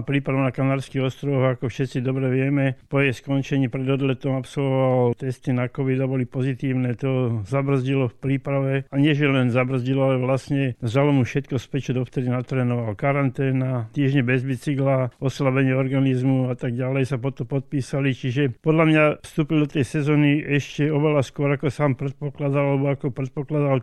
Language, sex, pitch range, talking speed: Slovak, male, 130-145 Hz, 160 wpm